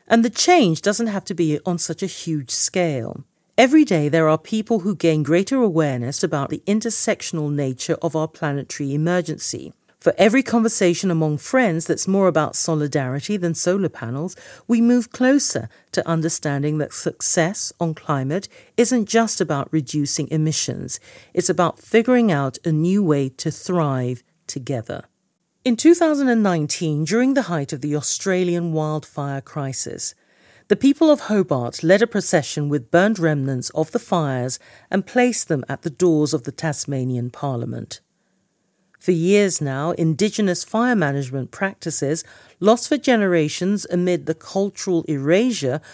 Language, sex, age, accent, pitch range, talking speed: English, female, 50-69, British, 145-200 Hz, 145 wpm